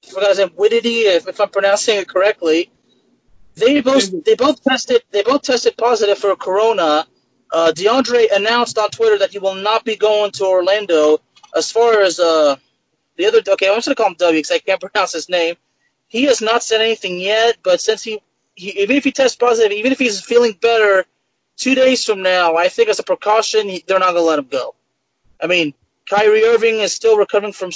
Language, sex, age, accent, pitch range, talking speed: English, male, 30-49, American, 185-245 Hz, 210 wpm